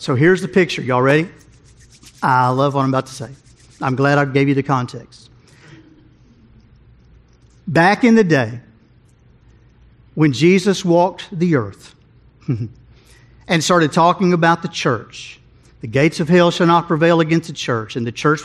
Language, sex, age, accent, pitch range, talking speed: English, male, 50-69, American, 130-190 Hz, 155 wpm